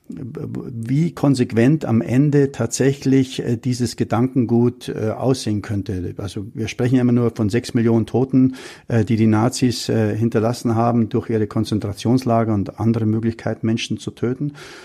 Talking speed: 130 wpm